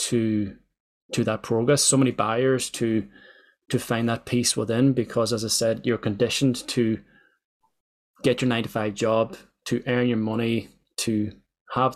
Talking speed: 155 wpm